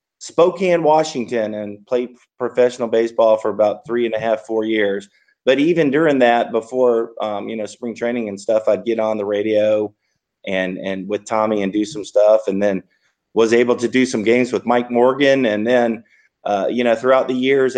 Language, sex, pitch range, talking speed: English, male, 105-125 Hz, 195 wpm